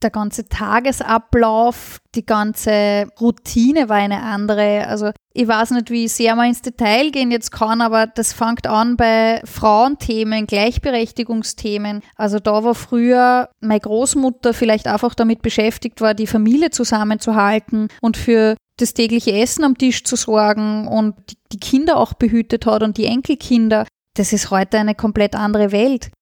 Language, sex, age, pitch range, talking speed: German, female, 20-39, 215-240 Hz, 155 wpm